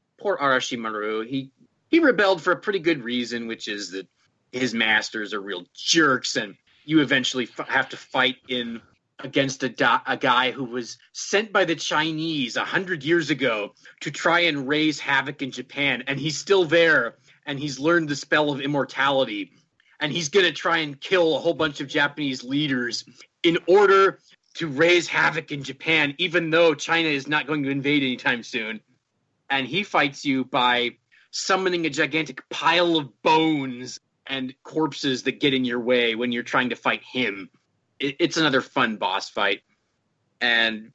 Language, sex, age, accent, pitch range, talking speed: English, male, 30-49, American, 125-160 Hz, 175 wpm